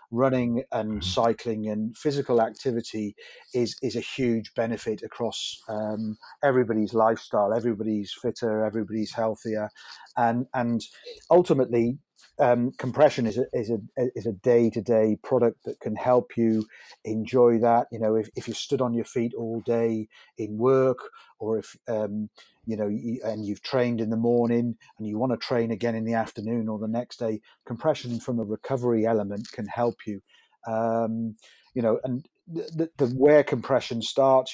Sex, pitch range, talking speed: male, 110-125 Hz, 160 wpm